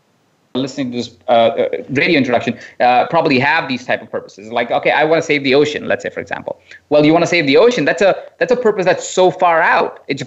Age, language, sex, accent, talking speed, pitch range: 30-49, English, male, Indian, 245 wpm, 130-170 Hz